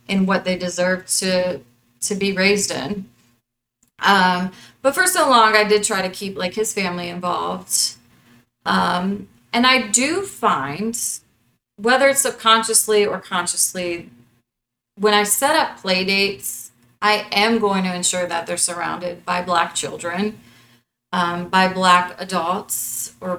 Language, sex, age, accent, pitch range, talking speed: English, female, 30-49, American, 180-215 Hz, 140 wpm